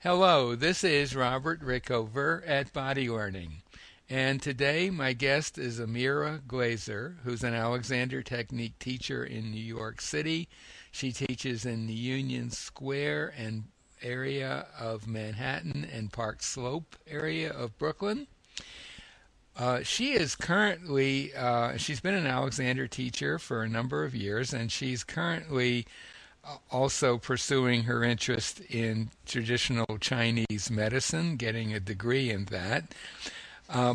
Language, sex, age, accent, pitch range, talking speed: English, male, 60-79, American, 115-140 Hz, 125 wpm